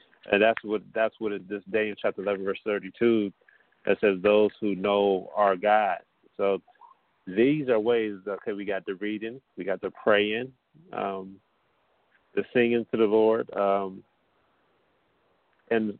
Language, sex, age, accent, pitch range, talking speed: English, male, 40-59, American, 100-115 Hz, 155 wpm